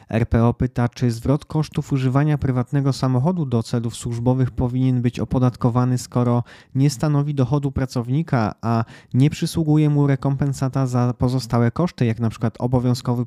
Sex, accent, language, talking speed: male, native, Polish, 140 wpm